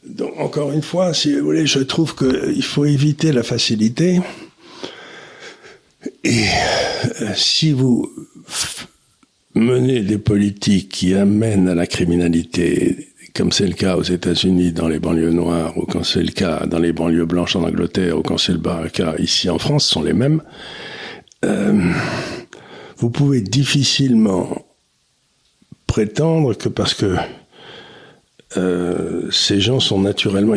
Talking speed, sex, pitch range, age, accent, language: 140 wpm, male, 95-135 Hz, 60-79, French, French